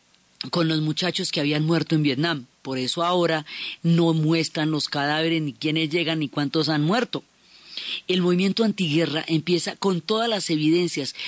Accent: Colombian